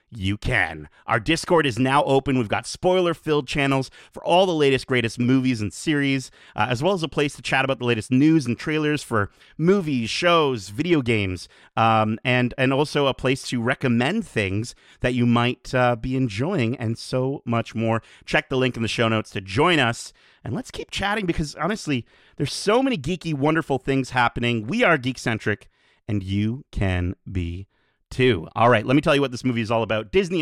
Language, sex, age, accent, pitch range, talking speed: English, male, 30-49, American, 115-150 Hz, 195 wpm